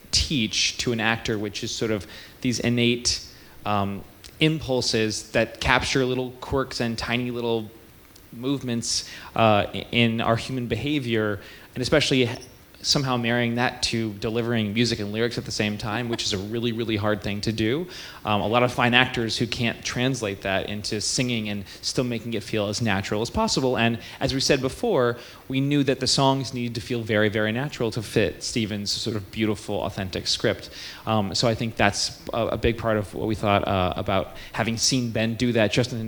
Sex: male